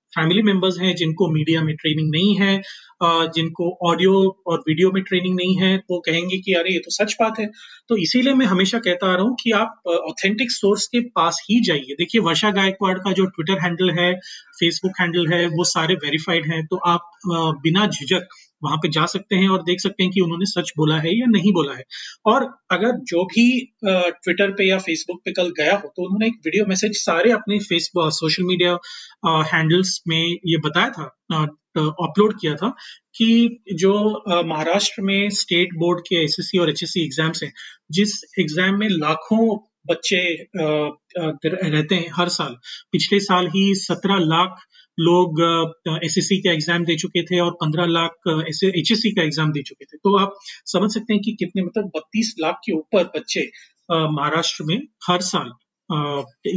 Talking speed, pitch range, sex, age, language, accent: 180 wpm, 165-200 Hz, male, 30-49, Hindi, native